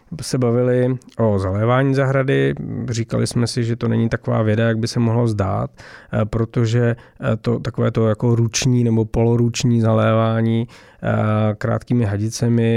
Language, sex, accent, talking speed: Czech, male, native, 135 wpm